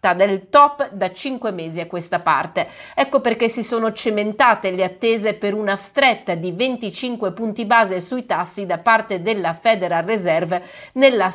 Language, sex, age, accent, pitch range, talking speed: Italian, female, 30-49, native, 185-235 Hz, 160 wpm